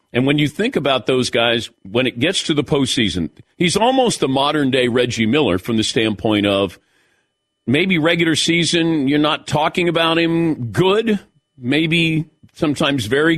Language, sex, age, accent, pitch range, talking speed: English, male, 50-69, American, 120-165 Hz, 155 wpm